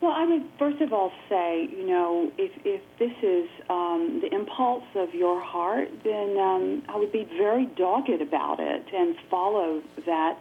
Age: 40-59